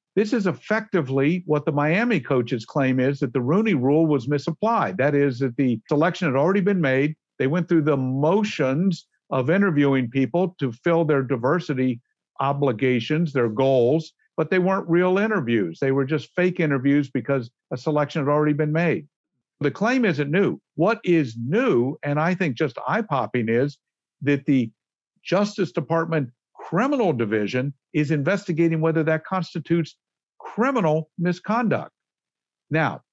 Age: 50-69